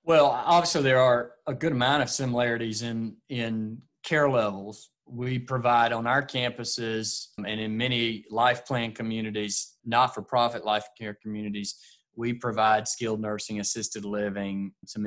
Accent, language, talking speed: American, English, 140 wpm